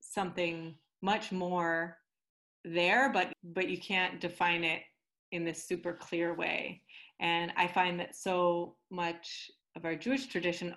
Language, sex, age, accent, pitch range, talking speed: English, female, 30-49, American, 165-180 Hz, 140 wpm